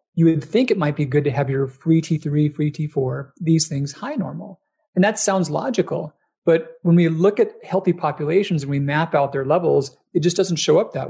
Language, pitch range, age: English, 145-180 Hz, 40-59